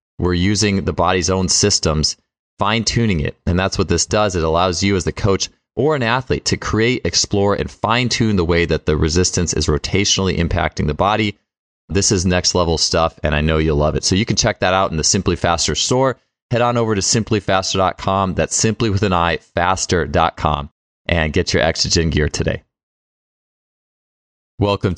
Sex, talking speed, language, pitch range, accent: male, 185 wpm, English, 80-100 Hz, American